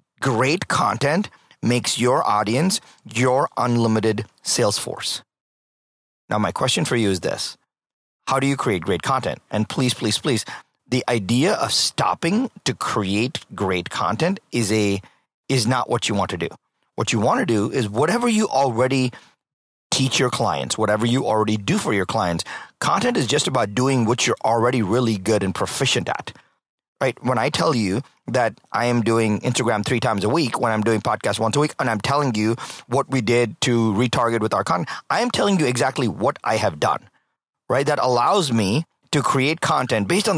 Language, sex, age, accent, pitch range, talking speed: English, male, 30-49, American, 110-135 Hz, 185 wpm